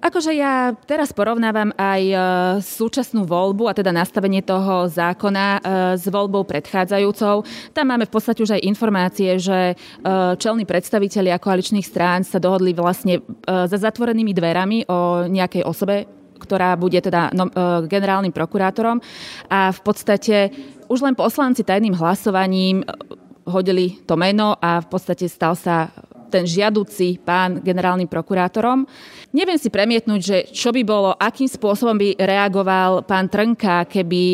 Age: 20-39